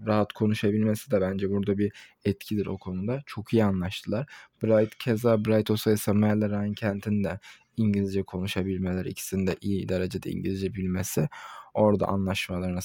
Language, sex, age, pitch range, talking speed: Turkish, male, 20-39, 105-130 Hz, 130 wpm